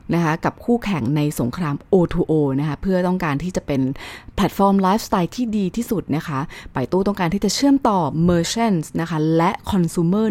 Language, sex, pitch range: Thai, female, 155-215 Hz